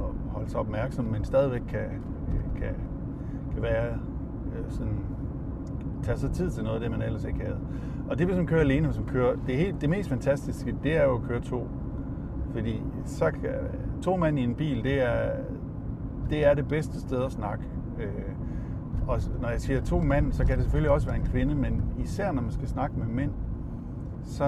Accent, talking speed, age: native, 190 wpm, 50-69